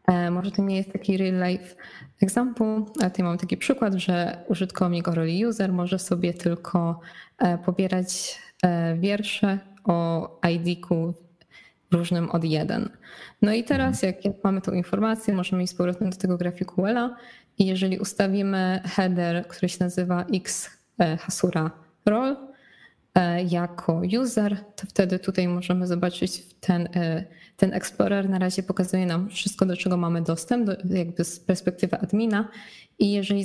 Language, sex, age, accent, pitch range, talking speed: Polish, female, 20-39, native, 175-200 Hz, 140 wpm